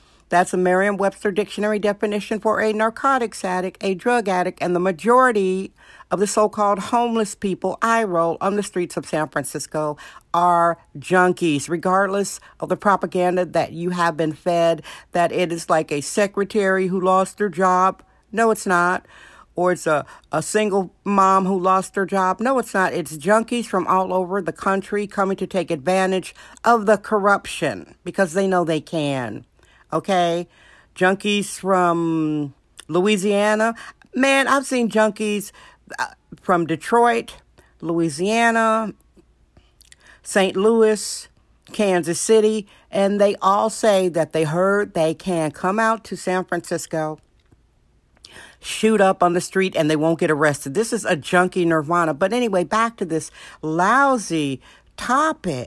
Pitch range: 175-210 Hz